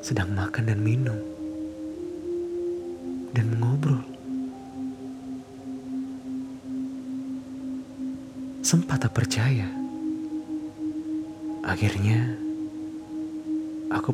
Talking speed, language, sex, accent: 45 wpm, Indonesian, male, native